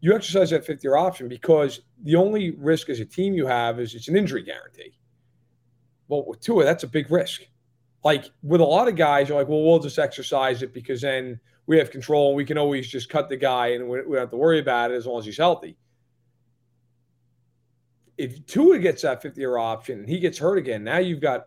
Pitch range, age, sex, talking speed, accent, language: 120-165 Hz, 40-59, male, 225 wpm, American, English